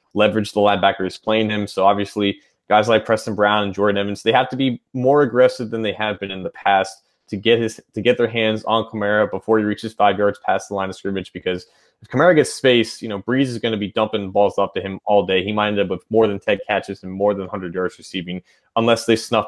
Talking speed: 255 wpm